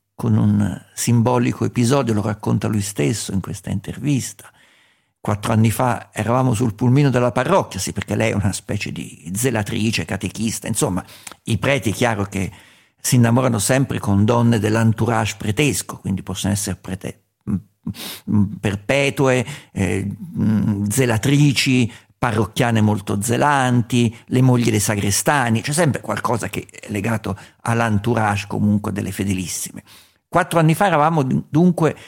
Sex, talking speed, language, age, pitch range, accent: male, 130 wpm, Italian, 50-69, 105-135 Hz, native